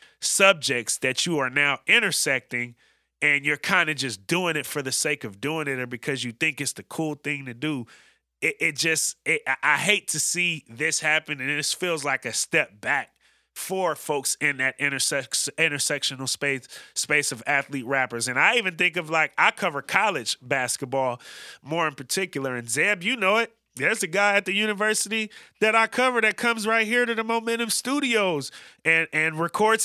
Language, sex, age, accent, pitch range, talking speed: English, male, 30-49, American, 145-190 Hz, 185 wpm